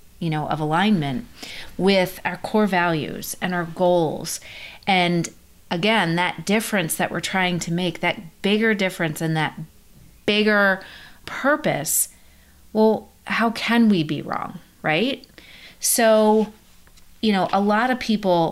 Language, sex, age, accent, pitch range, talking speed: English, female, 30-49, American, 160-205 Hz, 135 wpm